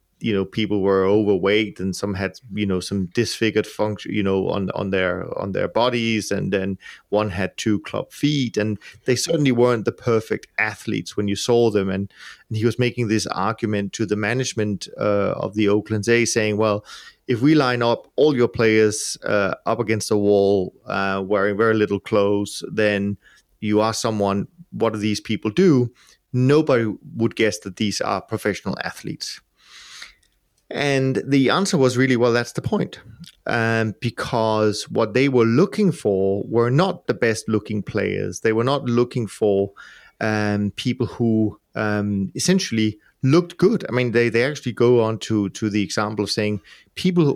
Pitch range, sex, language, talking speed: 105-125 Hz, male, English, 175 wpm